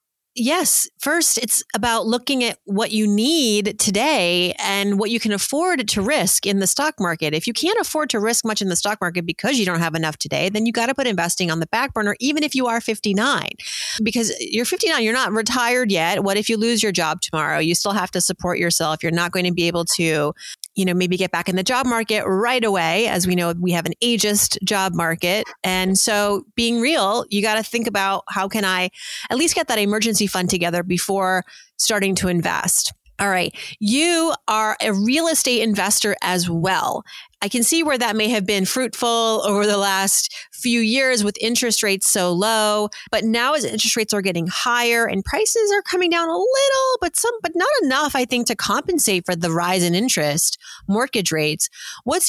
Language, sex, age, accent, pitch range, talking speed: English, female, 30-49, American, 185-235 Hz, 210 wpm